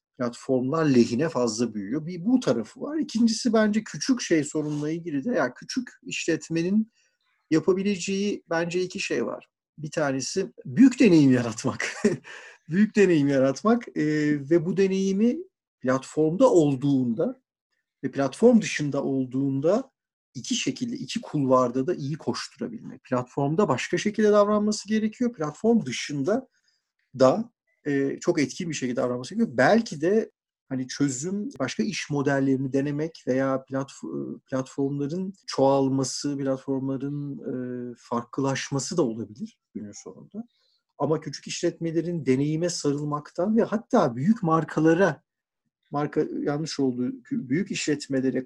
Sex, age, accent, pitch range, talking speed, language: male, 50-69, native, 135-210 Hz, 115 wpm, Turkish